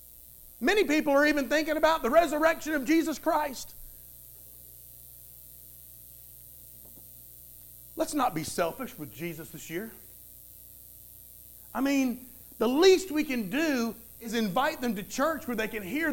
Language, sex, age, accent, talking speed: English, male, 50-69, American, 130 wpm